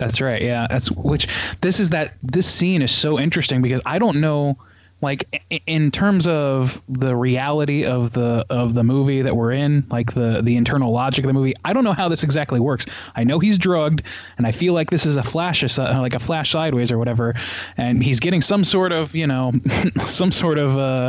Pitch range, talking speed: 120-150 Hz, 215 wpm